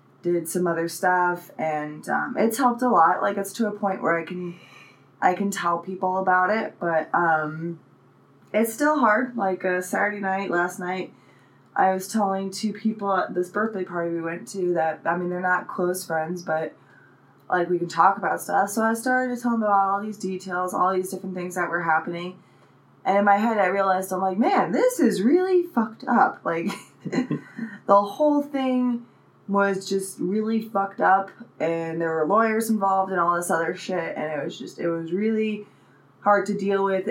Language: English